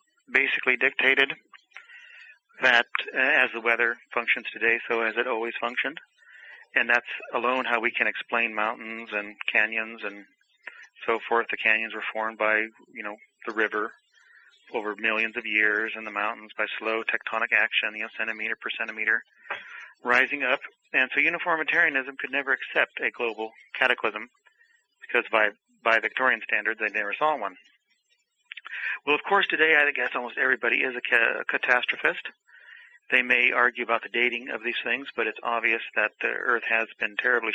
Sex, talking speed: male, 165 wpm